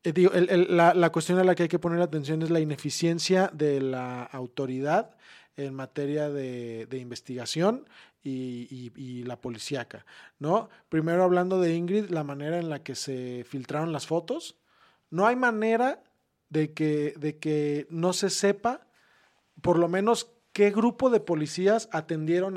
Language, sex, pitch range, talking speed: Spanish, male, 145-185 Hz, 160 wpm